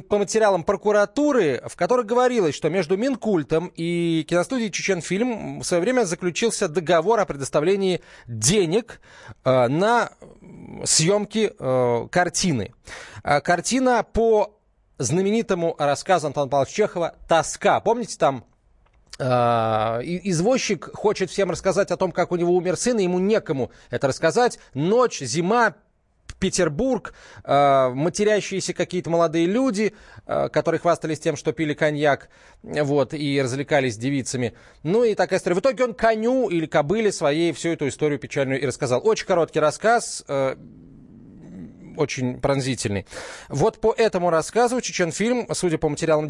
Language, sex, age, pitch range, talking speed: Russian, male, 30-49, 140-205 Hz, 135 wpm